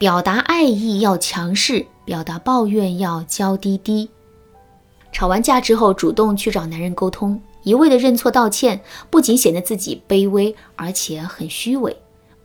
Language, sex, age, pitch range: Chinese, female, 20-39, 180-235 Hz